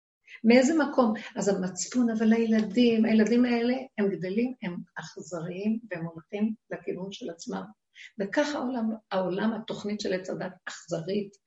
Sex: female